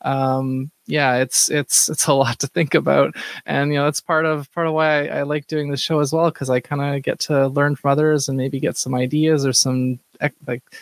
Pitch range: 135-160 Hz